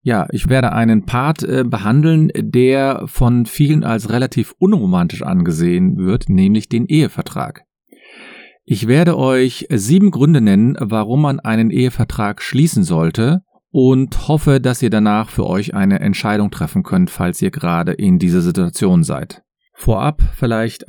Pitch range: 105-175 Hz